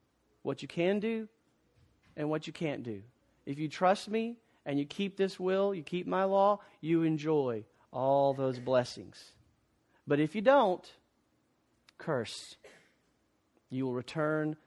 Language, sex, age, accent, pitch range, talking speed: English, male, 40-59, American, 150-205 Hz, 145 wpm